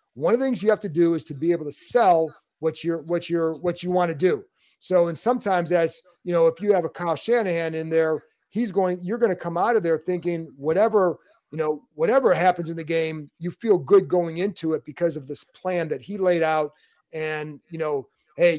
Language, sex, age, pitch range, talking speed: English, male, 40-59, 160-195 Hz, 230 wpm